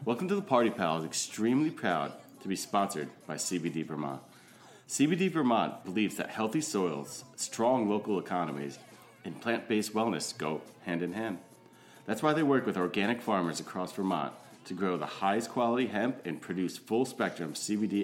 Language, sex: English, male